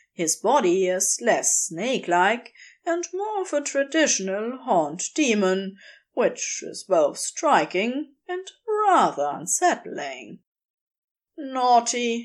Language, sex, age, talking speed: English, female, 30-49, 100 wpm